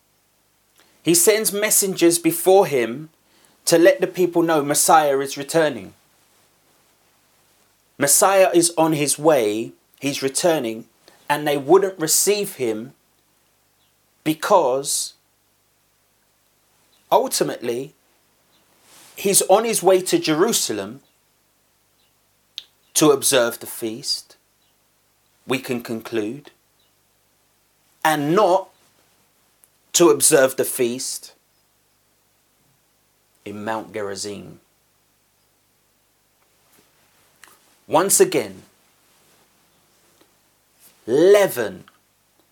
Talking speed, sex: 75 wpm, male